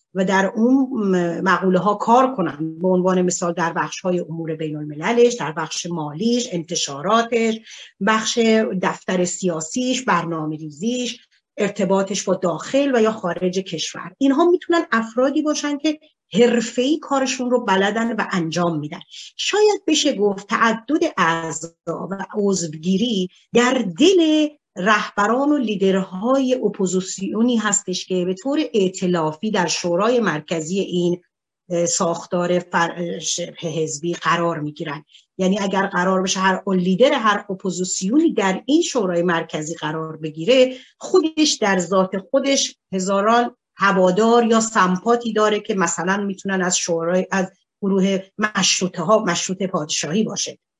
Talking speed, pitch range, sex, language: 125 wpm, 175-235 Hz, female, Persian